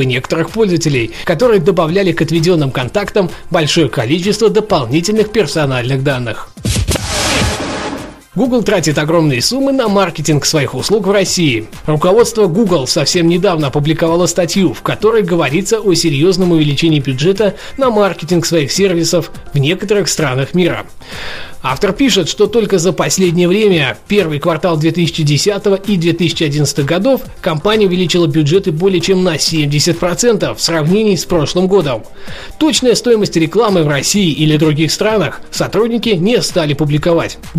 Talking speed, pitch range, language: 130 wpm, 155-200 Hz, Russian